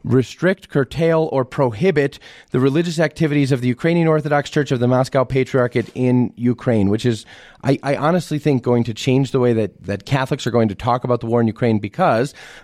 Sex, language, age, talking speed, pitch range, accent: male, English, 30-49, 205 wpm, 115-140 Hz, American